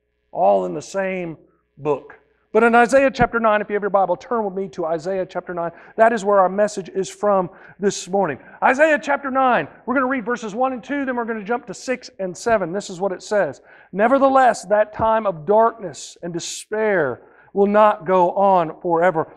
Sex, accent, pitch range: male, American, 175-230 Hz